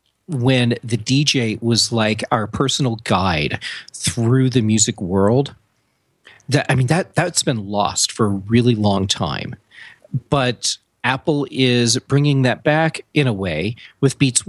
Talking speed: 145 wpm